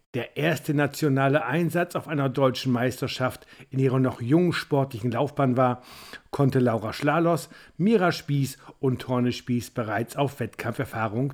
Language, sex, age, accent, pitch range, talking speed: German, male, 50-69, German, 125-160 Hz, 140 wpm